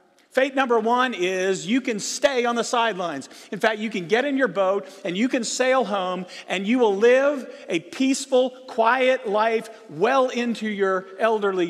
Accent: American